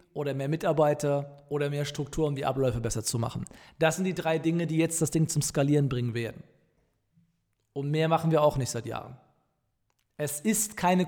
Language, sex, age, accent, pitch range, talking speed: German, male, 40-59, German, 160-185 Hz, 195 wpm